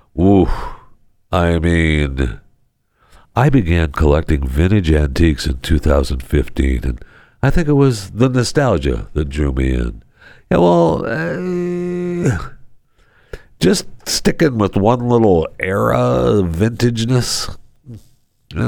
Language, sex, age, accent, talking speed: English, male, 60-79, American, 105 wpm